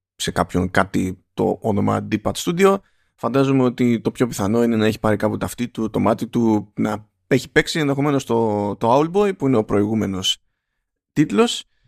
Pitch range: 105-135 Hz